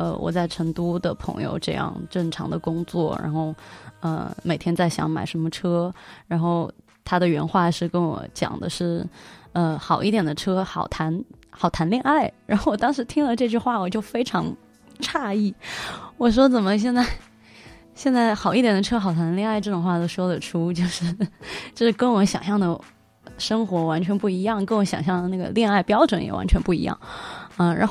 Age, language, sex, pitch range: 20-39, Chinese, female, 170-210 Hz